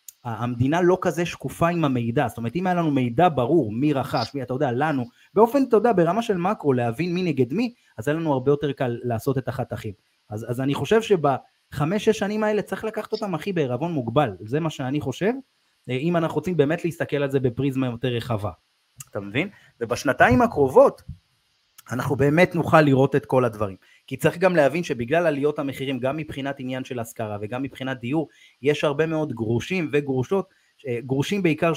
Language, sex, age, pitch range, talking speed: Hebrew, male, 30-49, 130-170 Hz, 185 wpm